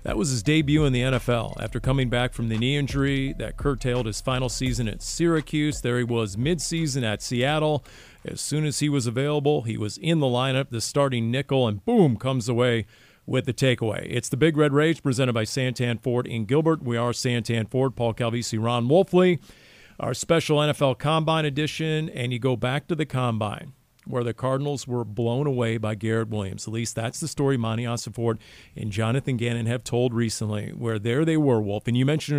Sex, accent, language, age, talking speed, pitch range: male, American, English, 40-59, 200 wpm, 120-150 Hz